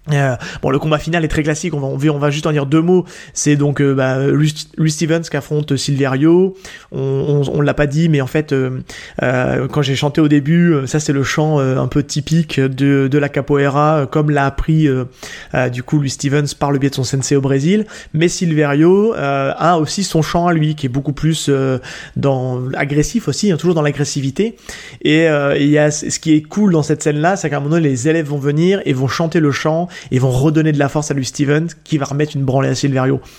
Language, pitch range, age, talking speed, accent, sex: French, 140-165 Hz, 20-39, 245 wpm, French, male